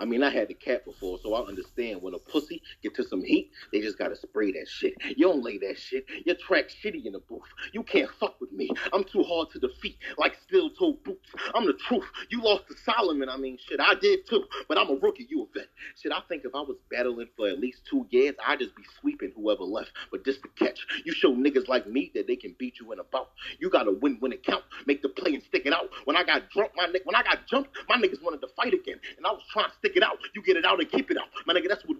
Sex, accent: male, American